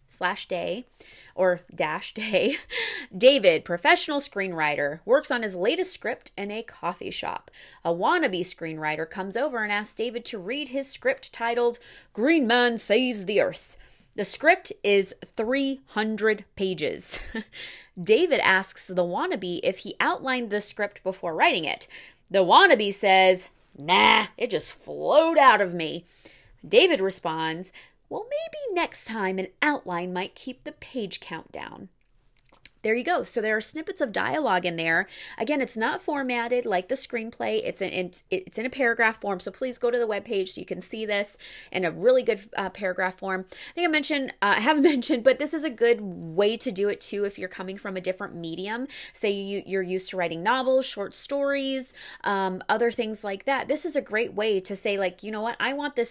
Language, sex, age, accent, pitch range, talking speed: English, female, 30-49, American, 190-265 Hz, 185 wpm